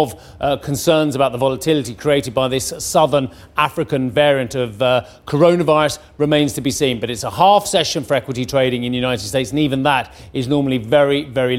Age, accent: 40-59, British